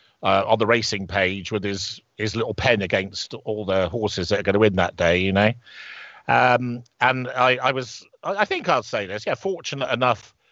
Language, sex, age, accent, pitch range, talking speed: English, male, 50-69, British, 100-125 Hz, 200 wpm